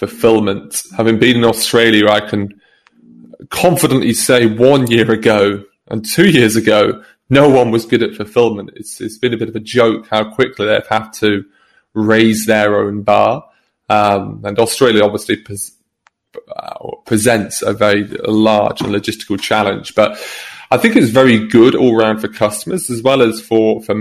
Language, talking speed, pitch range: English, 165 wpm, 105-115 Hz